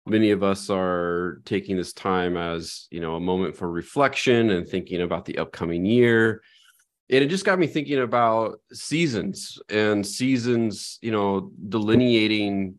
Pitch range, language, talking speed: 95-110 Hz, English, 155 wpm